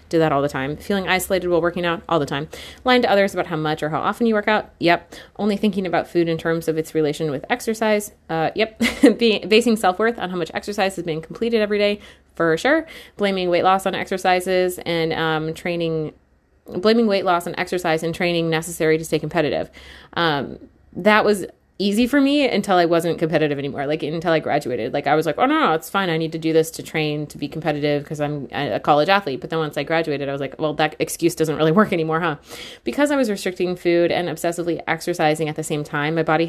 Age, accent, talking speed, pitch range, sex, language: 30-49, American, 230 wpm, 160-200 Hz, female, English